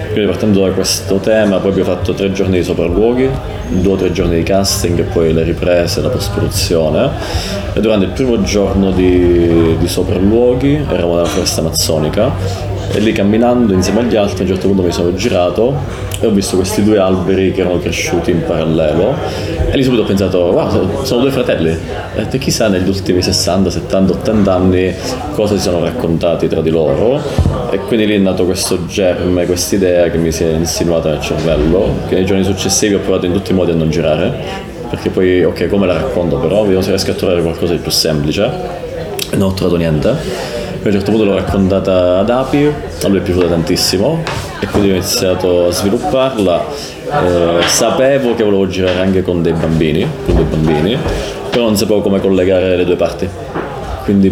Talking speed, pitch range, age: 190 wpm, 85-100 Hz, 30-49